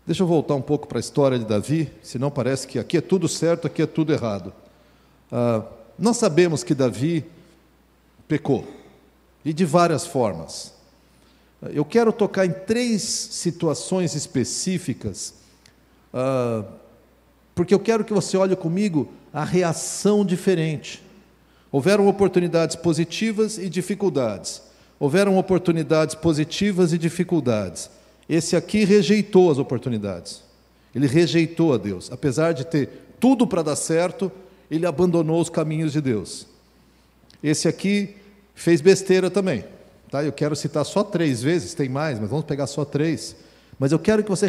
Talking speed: 140 wpm